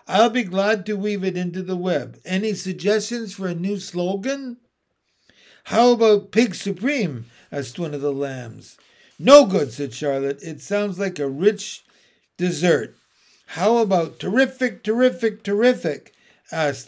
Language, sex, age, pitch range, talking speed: English, male, 60-79, 165-210 Hz, 140 wpm